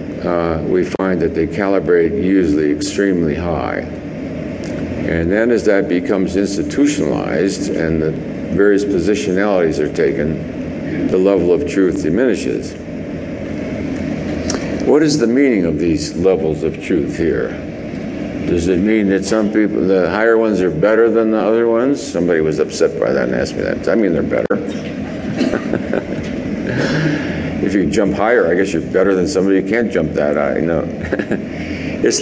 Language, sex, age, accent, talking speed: English, male, 60-79, American, 150 wpm